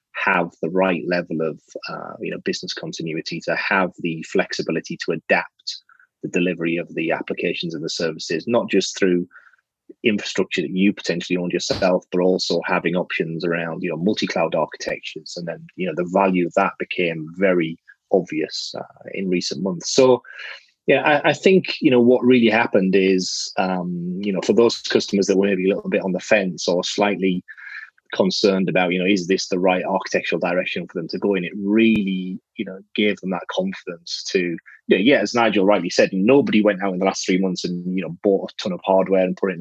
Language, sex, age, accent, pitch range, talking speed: English, male, 30-49, British, 90-105 Hz, 205 wpm